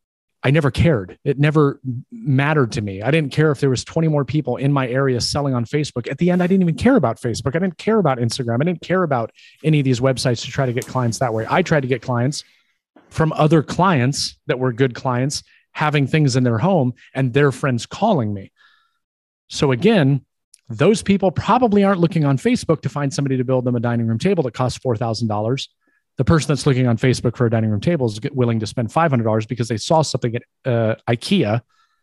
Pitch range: 115-150 Hz